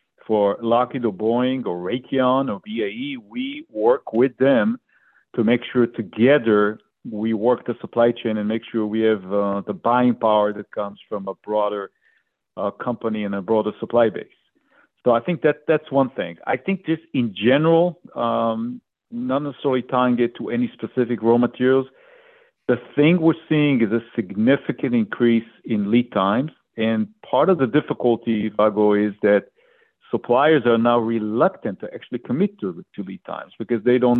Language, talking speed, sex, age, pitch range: English, 170 wpm, male, 50-69, 115-140 Hz